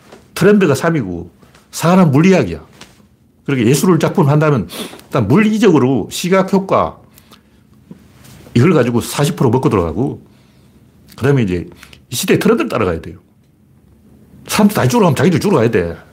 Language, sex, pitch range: Korean, male, 95-155 Hz